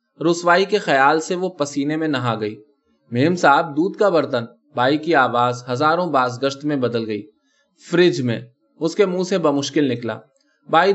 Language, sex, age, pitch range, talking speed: Urdu, male, 20-39, 130-175 Hz, 165 wpm